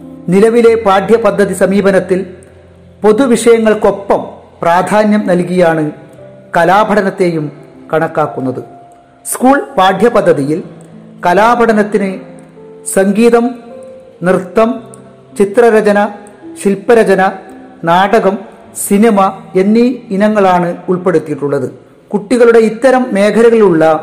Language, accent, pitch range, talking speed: Malayalam, native, 160-225 Hz, 55 wpm